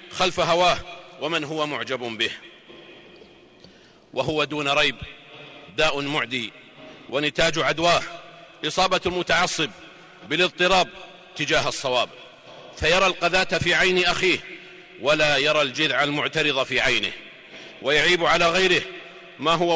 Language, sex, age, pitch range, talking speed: Arabic, male, 50-69, 150-180 Hz, 105 wpm